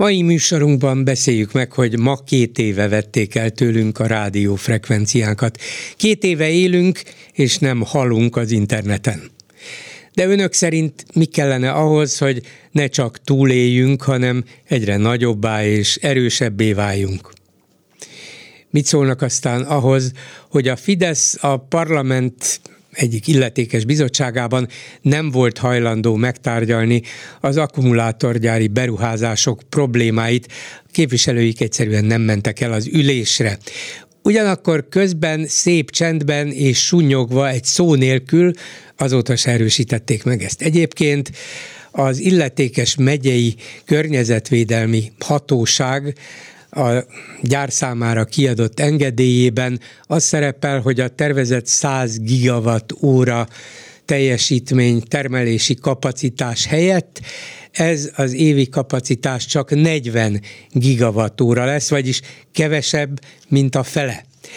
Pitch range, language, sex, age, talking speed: 120-145 Hz, Hungarian, male, 60-79, 110 wpm